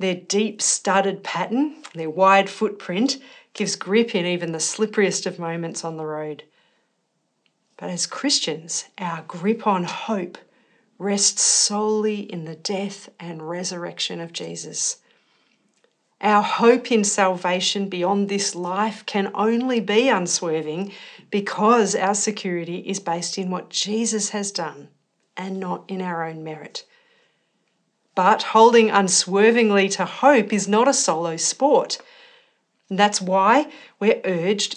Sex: female